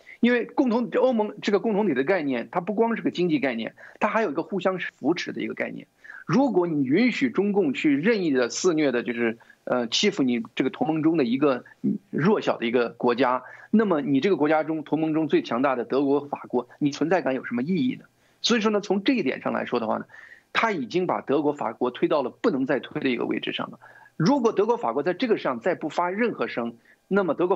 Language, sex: Chinese, male